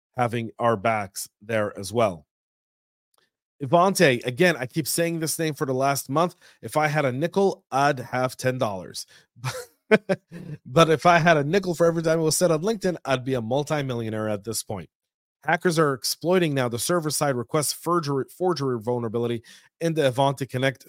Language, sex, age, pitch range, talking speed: English, male, 30-49, 115-140 Hz, 175 wpm